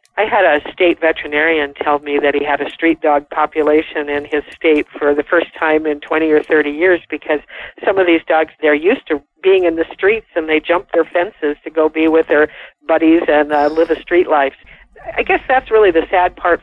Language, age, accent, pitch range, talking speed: English, 50-69, American, 155-175 Hz, 225 wpm